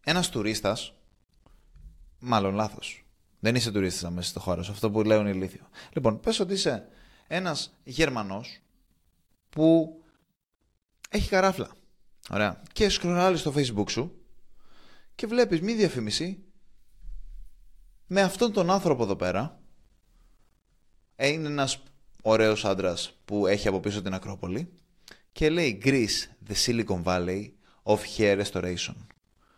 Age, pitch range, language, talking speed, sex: 20-39, 95-150 Hz, Greek, 120 wpm, male